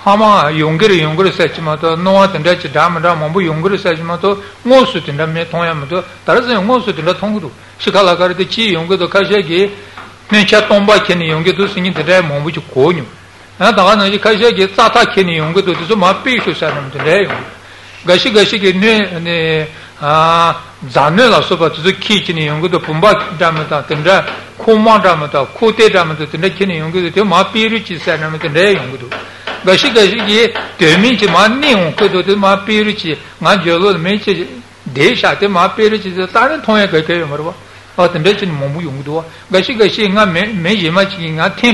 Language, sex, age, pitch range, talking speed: Italian, male, 60-79, 165-210 Hz, 85 wpm